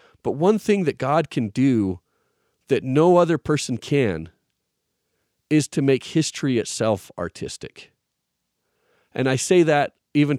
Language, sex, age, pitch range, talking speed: English, male, 40-59, 115-150 Hz, 135 wpm